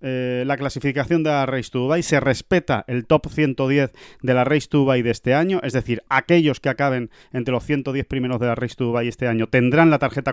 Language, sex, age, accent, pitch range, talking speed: Spanish, male, 30-49, Spanish, 125-160 Hz, 225 wpm